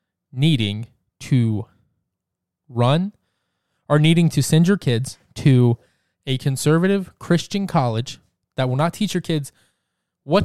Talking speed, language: 120 wpm, English